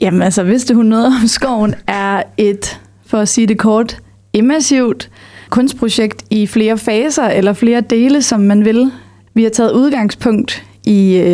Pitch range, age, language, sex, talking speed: 205-235 Hz, 30-49, Danish, female, 160 wpm